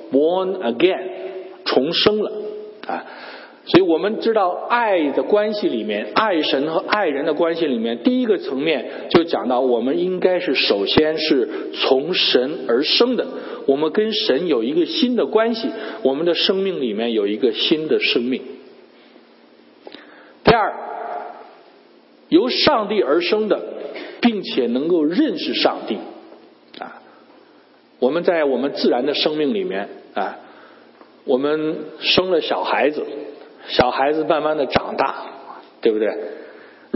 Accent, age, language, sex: native, 50-69, Chinese, male